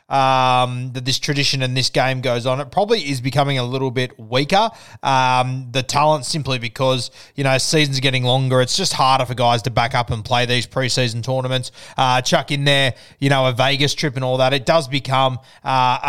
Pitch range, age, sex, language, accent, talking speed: 130-155 Hz, 20-39, male, English, Australian, 215 wpm